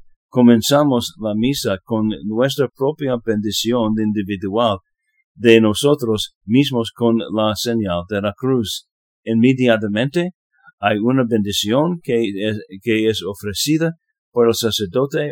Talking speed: 110 wpm